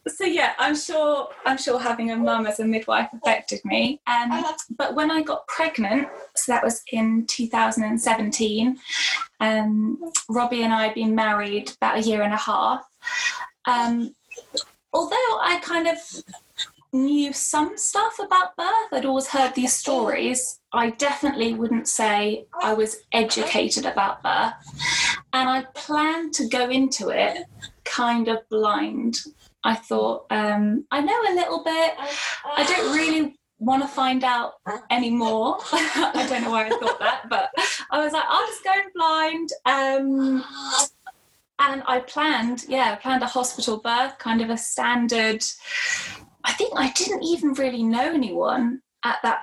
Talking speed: 155 wpm